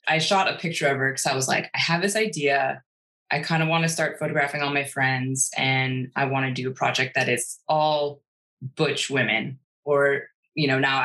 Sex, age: female, 20-39